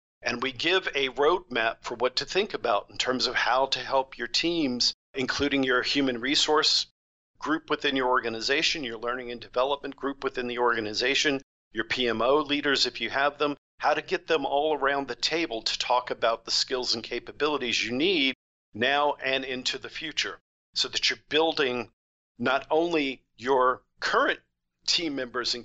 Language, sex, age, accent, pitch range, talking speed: English, male, 50-69, American, 115-140 Hz, 175 wpm